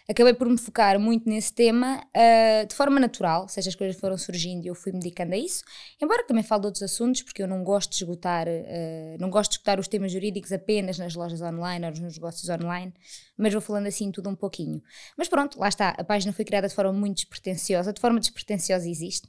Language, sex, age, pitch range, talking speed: Portuguese, female, 20-39, 190-235 Hz, 230 wpm